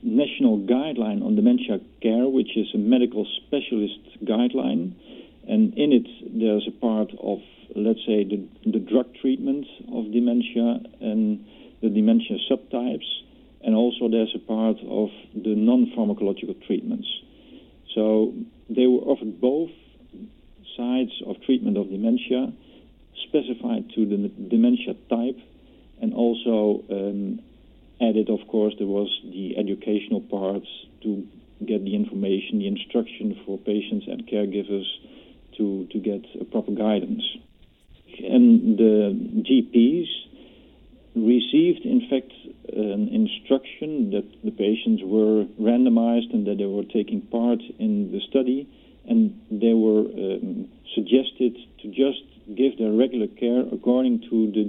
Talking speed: 130 wpm